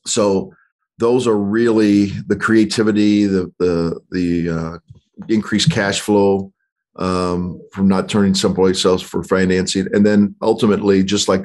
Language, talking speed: English, 135 wpm